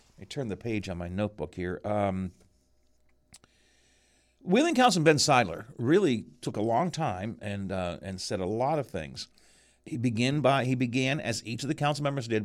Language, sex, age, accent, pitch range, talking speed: English, male, 50-69, American, 100-130 Hz, 185 wpm